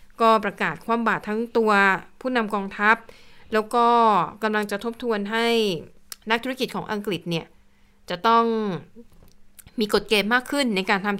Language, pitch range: Thai, 185-225 Hz